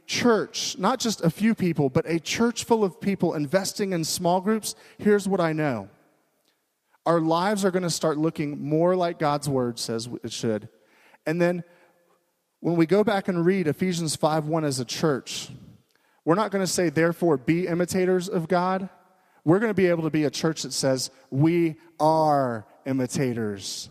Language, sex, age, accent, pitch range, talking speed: English, male, 30-49, American, 150-190 Hz, 180 wpm